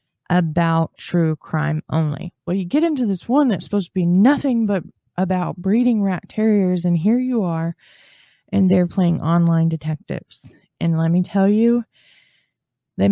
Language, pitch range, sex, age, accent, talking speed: English, 165-205 Hz, female, 20-39, American, 160 wpm